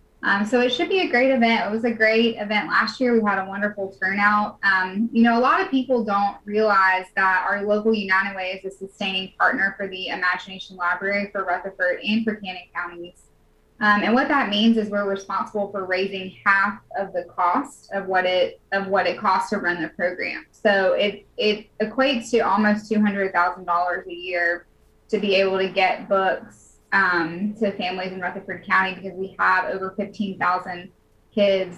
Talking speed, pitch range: 195 wpm, 190-215 Hz